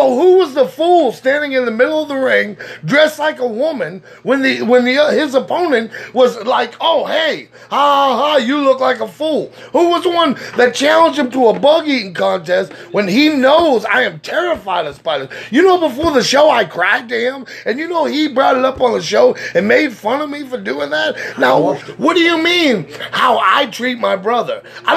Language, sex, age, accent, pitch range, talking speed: English, male, 30-49, American, 240-300 Hz, 225 wpm